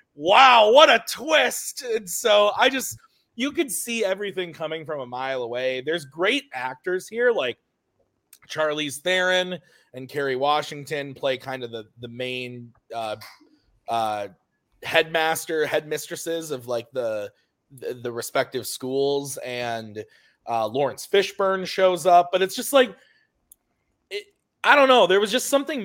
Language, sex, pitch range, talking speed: English, male, 130-190 Hz, 140 wpm